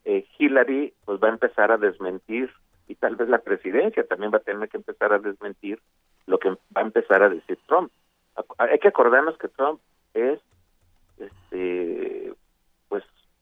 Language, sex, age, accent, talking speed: Spanish, male, 50-69, Mexican, 170 wpm